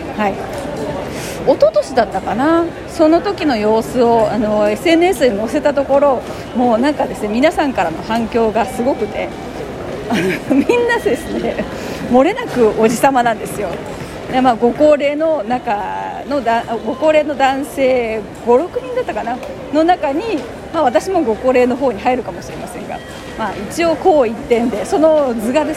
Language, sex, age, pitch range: Japanese, female, 40-59, 225-290 Hz